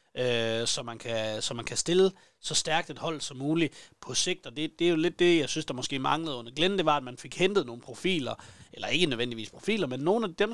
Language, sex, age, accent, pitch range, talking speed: Danish, male, 30-49, native, 120-160 Hz, 260 wpm